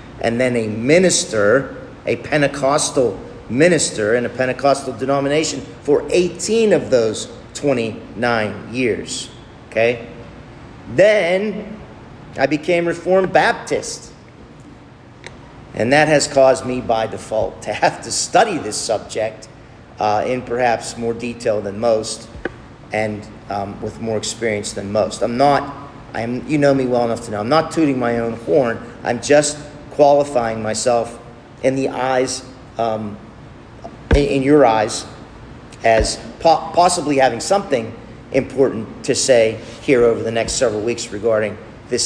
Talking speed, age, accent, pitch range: 130 wpm, 50-69, American, 115-145 Hz